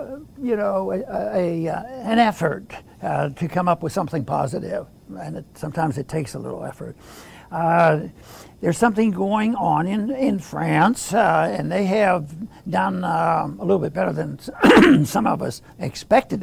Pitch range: 165-210 Hz